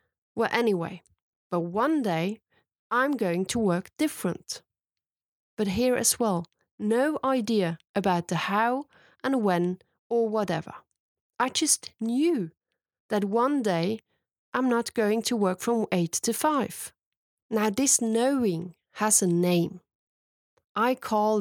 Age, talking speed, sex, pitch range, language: 30-49, 130 wpm, female, 190-235 Hz, English